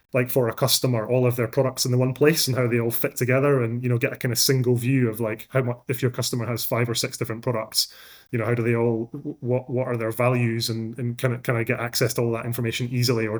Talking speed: 290 wpm